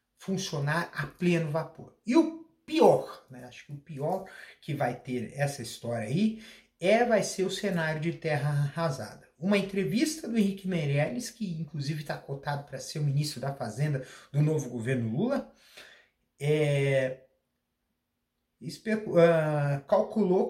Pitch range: 130-185 Hz